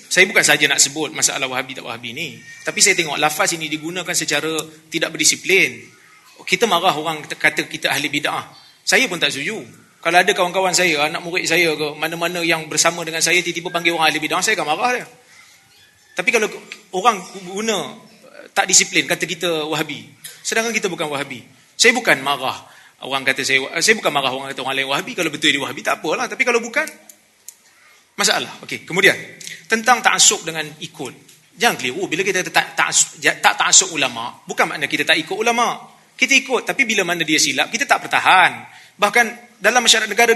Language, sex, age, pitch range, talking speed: Malay, male, 30-49, 160-230 Hz, 185 wpm